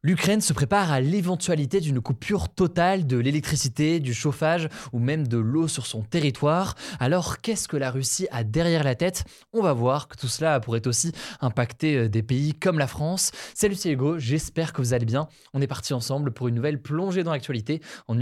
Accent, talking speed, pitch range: French, 200 wpm, 125-160 Hz